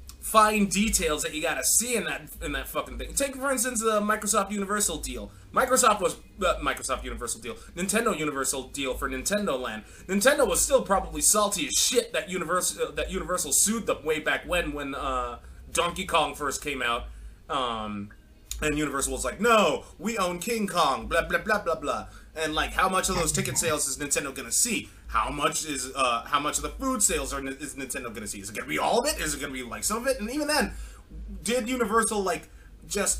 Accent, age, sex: American, 20-39, male